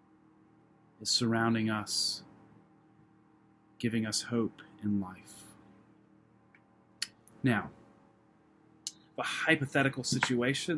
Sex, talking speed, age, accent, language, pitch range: male, 65 wpm, 30-49, American, English, 110-150 Hz